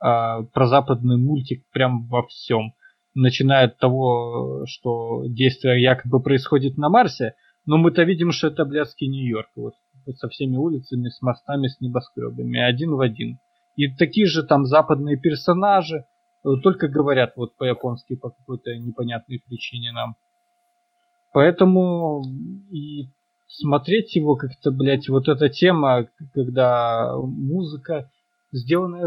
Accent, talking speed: native, 130 wpm